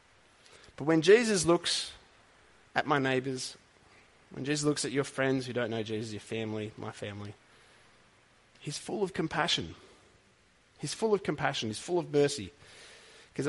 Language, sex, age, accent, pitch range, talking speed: English, male, 30-49, Australian, 115-160 Hz, 150 wpm